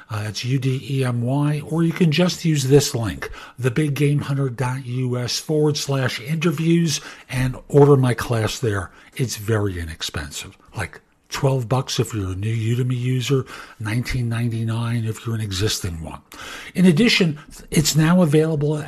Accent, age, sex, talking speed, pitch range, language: American, 50-69, male, 140 wpm, 120-160 Hz, English